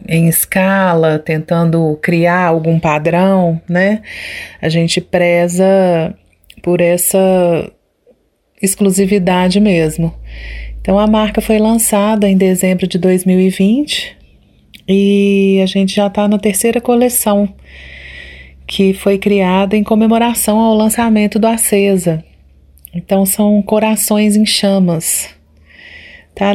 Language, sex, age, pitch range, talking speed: Portuguese, female, 30-49, 170-210 Hz, 105 wpm